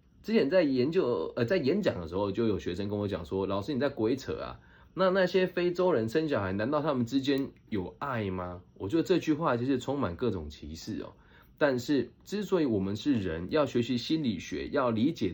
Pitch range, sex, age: 95-135 Hz, male, 20-39